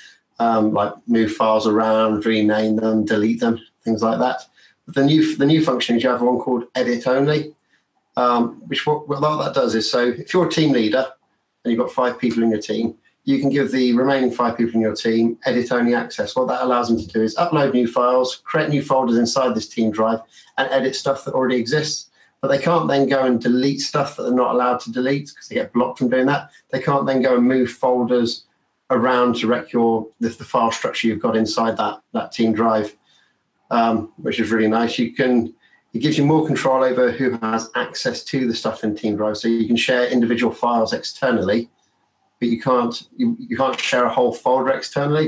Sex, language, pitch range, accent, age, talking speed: male, English, 115-130 Hz, British, 30-49, 215 wpm